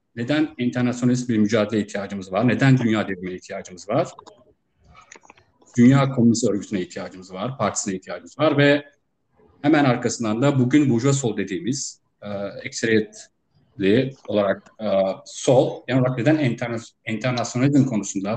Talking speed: 120 wpm